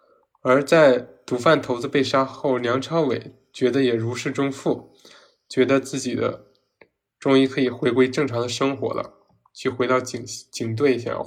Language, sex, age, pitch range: Chinese, male, 20-39, 120-135 Hz